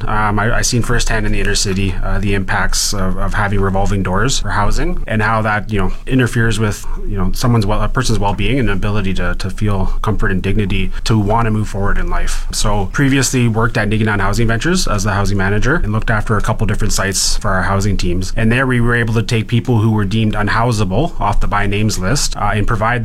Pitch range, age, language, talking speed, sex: 100-115 Hz, 30-49, English, 235 wpm, male